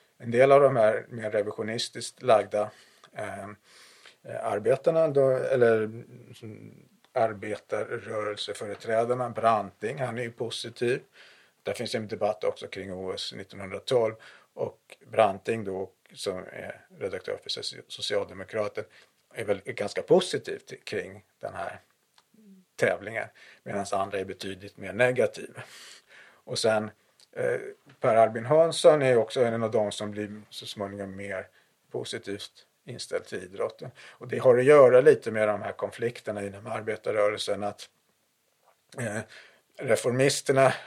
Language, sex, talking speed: Swedish, male, 120 wpm